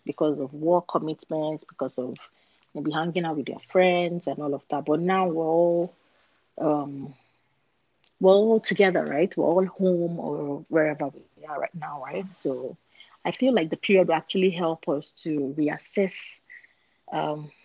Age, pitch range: 30-49, 160-200 Hz